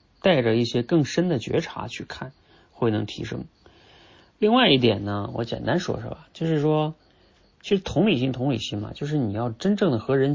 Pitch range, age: 115-160 Hz, 30-49